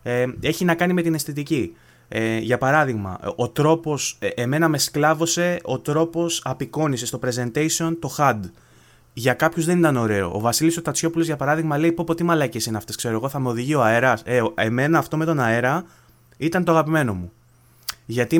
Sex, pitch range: male, 120-165 Hz